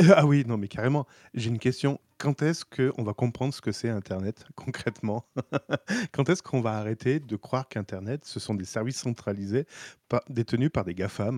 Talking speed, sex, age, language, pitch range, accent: 190 wpm, male, 30-49, French, 105-145 Hz, French